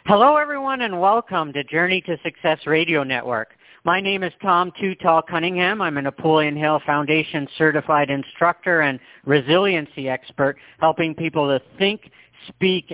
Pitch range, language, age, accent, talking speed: 135-165 Hz, English, 50-69, American, 145 wpm